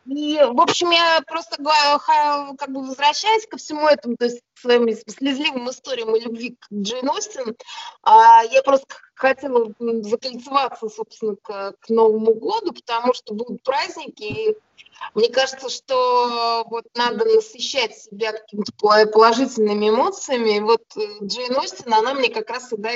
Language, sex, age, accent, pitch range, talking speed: Russian, female, 20-39, native, 225-305 Hz, 140 wpm